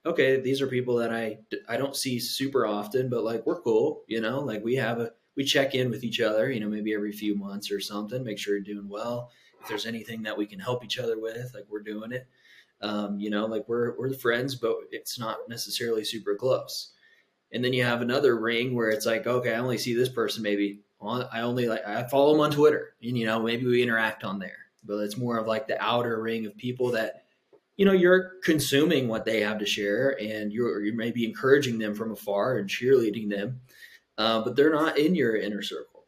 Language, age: English, 20-39